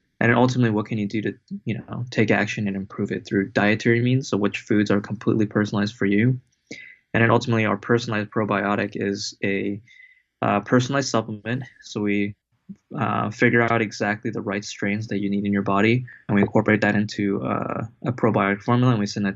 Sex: male